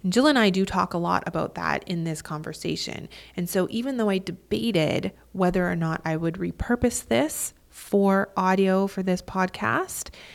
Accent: American